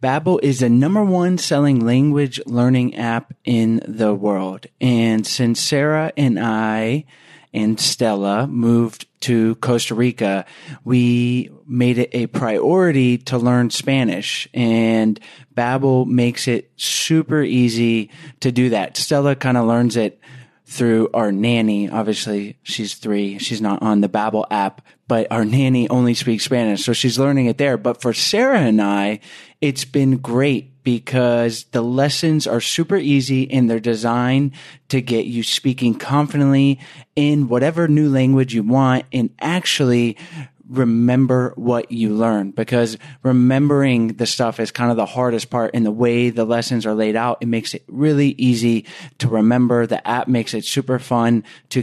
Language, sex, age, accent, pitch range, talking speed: English, male, 30-49, American, 115-140 Hz, 155 wpm